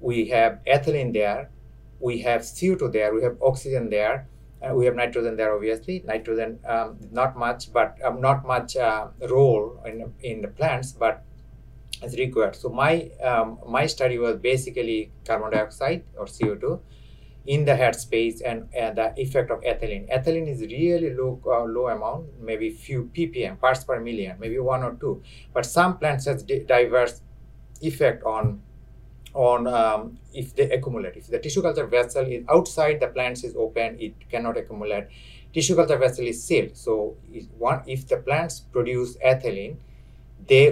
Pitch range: 115-140 Hz